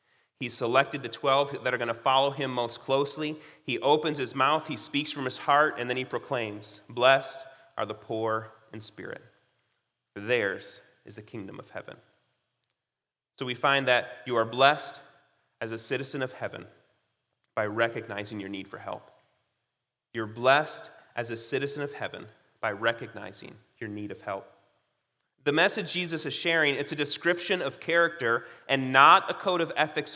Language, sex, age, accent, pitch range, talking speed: English, male, 30-49, American, 125-160 Hz, 170 wpm